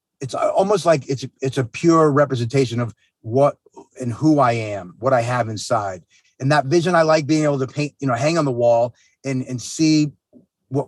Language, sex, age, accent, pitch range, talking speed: English, male, 30-49, American, 125-155 Hz, 205 wpm